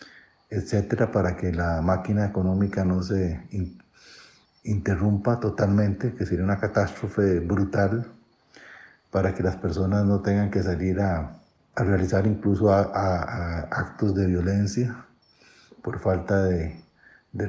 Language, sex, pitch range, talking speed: Spanish, male, 95-110 Hz, 130 wpm